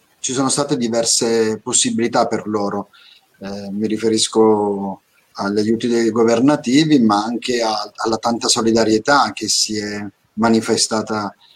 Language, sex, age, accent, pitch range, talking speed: Italian, male, 30-49, native, 110-125 Hz, 125 wpm